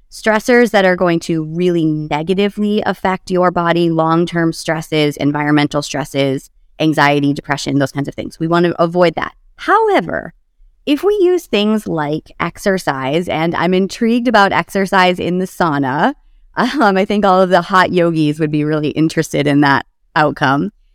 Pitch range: 150-200 Hz